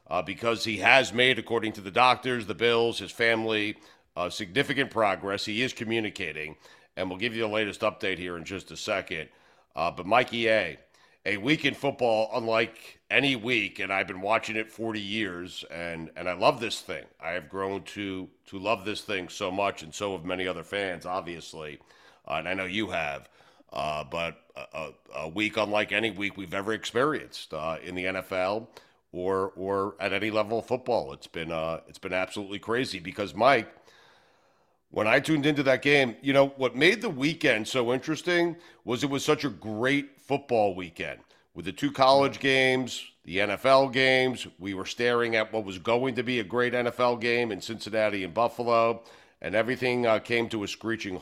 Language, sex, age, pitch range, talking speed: English, male, 50-69, 95-125 Hz, 190 wpm